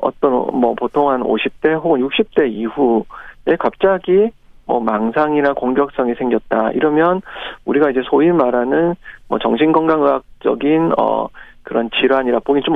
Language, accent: Korean, native